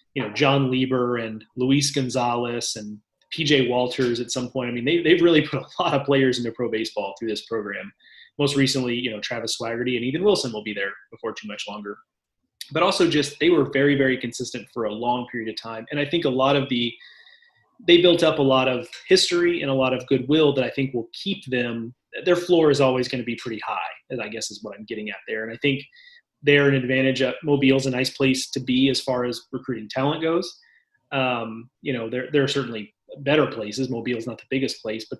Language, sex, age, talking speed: English, male, 30-49, 230 wpm